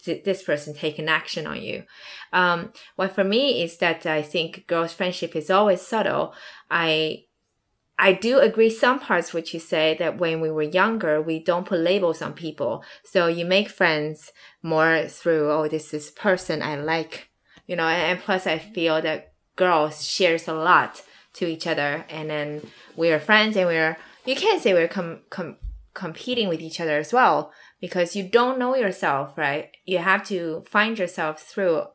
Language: English